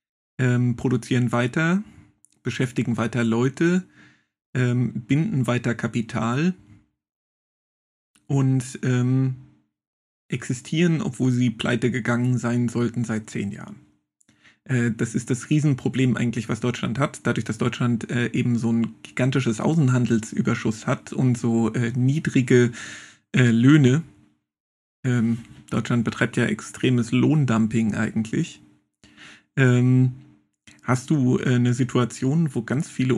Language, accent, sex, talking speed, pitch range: German, German, male, 110 wpm, 115-130 Hz